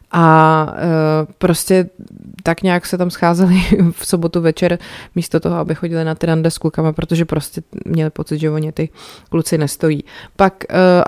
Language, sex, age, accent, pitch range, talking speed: Czech, female, 20-39, native, 160-185 Hz, 170 wpm